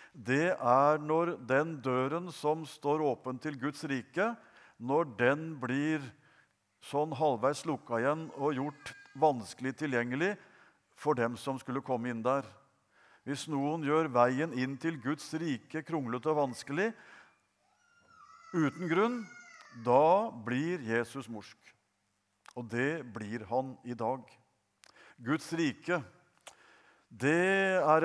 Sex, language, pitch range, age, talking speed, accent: male, English, 125-160 Hz, 50-69, 125 wpm, Norwegian